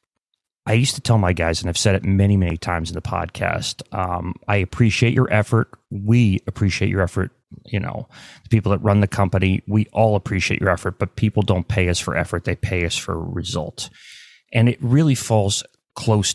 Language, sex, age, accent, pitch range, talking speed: English, male, 30-49, American, 90-110 Hz, 205 wpm